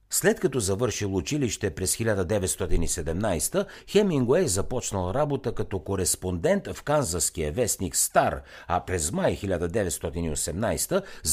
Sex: male